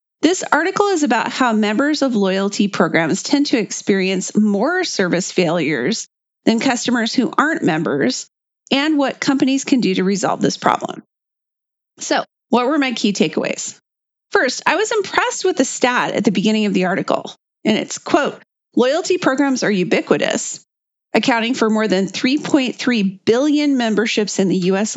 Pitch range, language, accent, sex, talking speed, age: 210-290 Hz, English, American, female, 155 wpm, 40-59